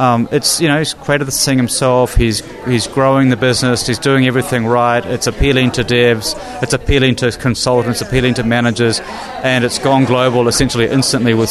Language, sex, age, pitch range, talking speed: English, male, 30-49, 115-135 Hz, 195 wpm